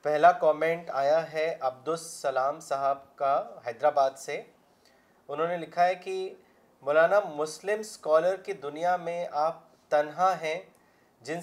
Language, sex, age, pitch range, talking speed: Urdu, male, 30-49, 150-185 Hz, 125 wpm